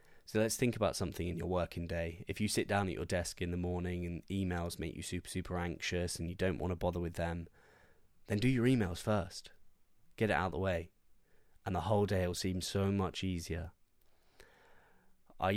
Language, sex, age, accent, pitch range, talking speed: English, male, 10-29, British, 85-100 Hz, 210 wpm